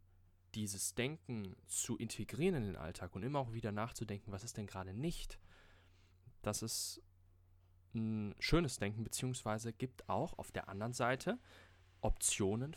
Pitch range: 90-120 Hz